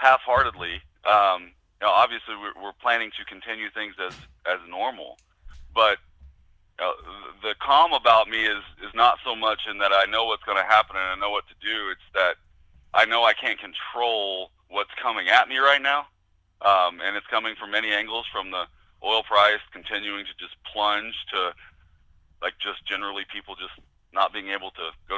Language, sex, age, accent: English, male, 30-49, American